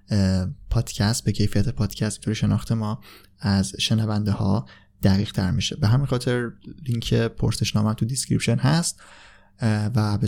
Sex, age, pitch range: male, 20-39, 105-130 Hz